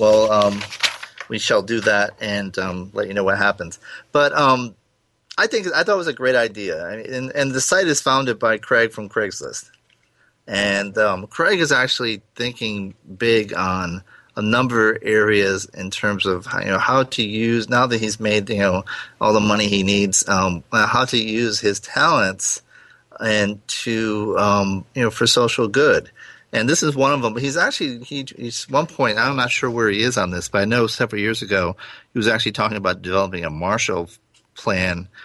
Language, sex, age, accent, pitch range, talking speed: English, male, 30-49, American, 95-115 Hz, 195 wpm